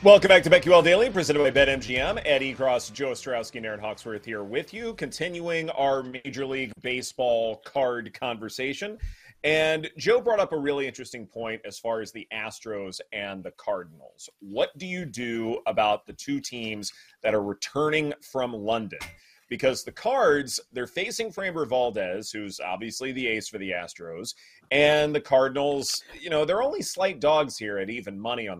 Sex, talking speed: male, 175 wpm